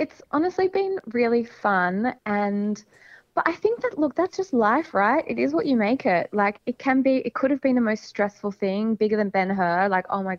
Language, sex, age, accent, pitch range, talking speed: English, female, 20-39, Australian, 180-220 Hz, 225 wpm